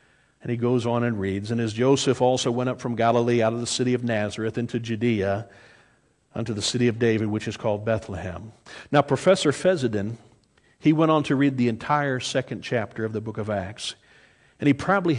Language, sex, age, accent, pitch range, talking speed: English, male, 50-69, American, 115-150 Hz, 200 wpm